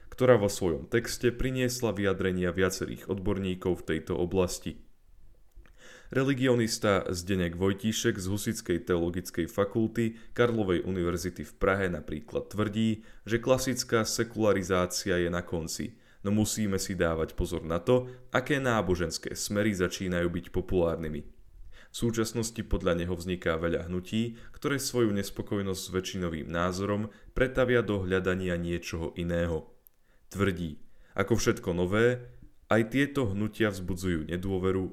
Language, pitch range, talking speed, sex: Slovak, 90-115 Hz, 120 wpm, male